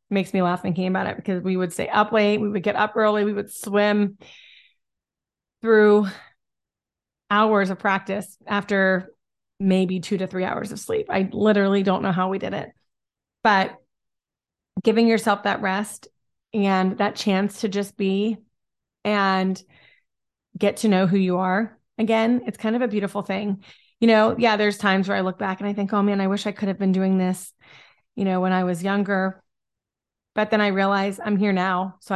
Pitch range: 190-210 Hz